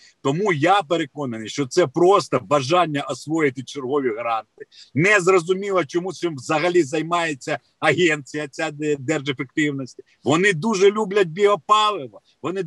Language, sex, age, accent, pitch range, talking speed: Ukrainian, male, 50-69, native, 135-190 Hz, 115 wpm